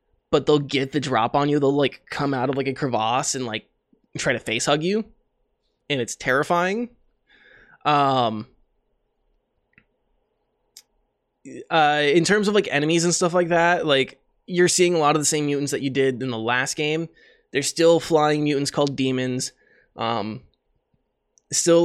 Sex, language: male, English